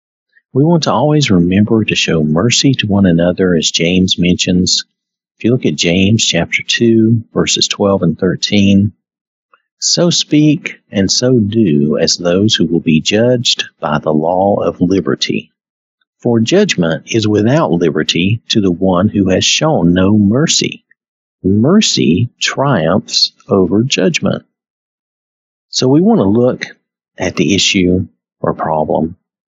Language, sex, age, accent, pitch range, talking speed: English, male, 50-69, American, 90-120 Hz, 140 wpm